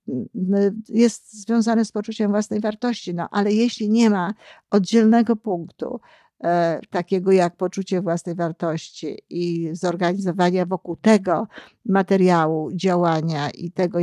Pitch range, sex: 175-210 Hz, female